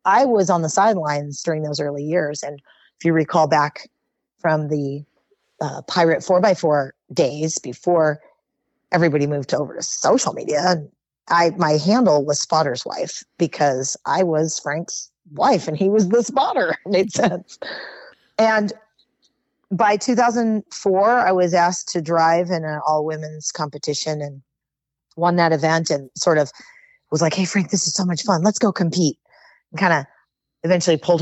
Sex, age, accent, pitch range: female, 30-49, American, 150-195 Hz